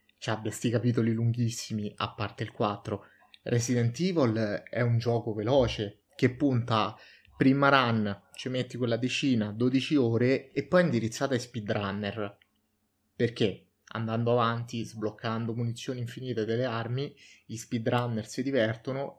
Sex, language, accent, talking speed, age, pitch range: male, Italian, native, 140 wpm, 20-39, 110-130 Hz